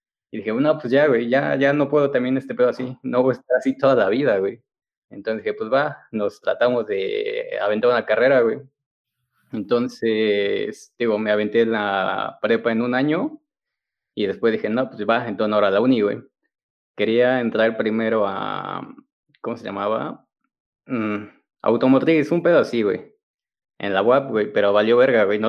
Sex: male